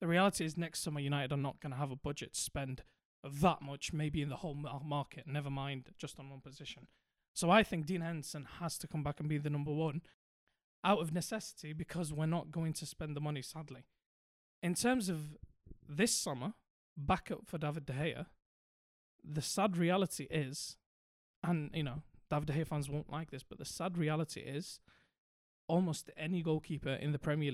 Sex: male